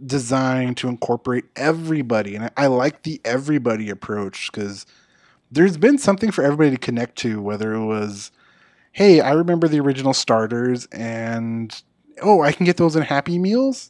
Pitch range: 110-145 Hz